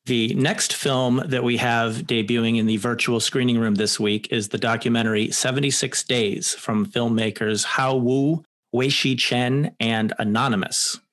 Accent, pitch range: American, 115-130 Hz